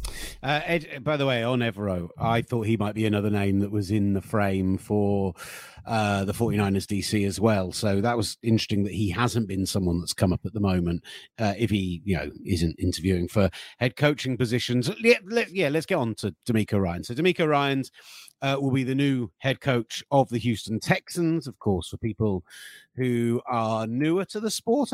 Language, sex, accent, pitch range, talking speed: English, male, British, 105-130 Hz, 205 wpm